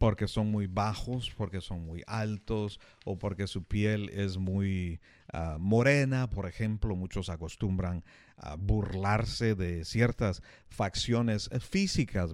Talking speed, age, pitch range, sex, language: 120 wpm, 50-69, 95-120 Hz, male, Spanish